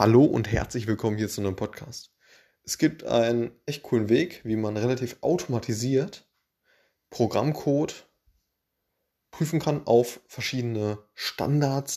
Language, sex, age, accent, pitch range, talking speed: German, male, 20-39, German, 105-125 Hz, 120 wpm